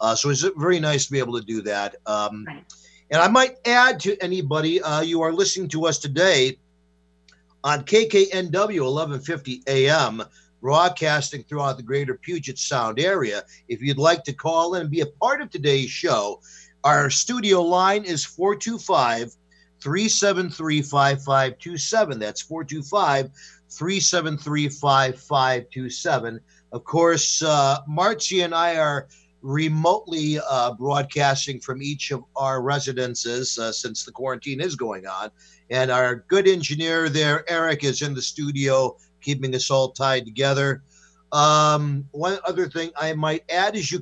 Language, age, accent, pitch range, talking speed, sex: English, 50-69, American, 135-180 Hz, 140 wpm, male